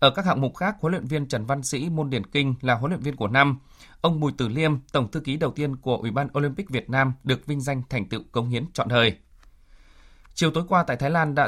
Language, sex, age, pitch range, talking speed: Vietnamese, male, 20-39, 125-155 Hz, 265 wpm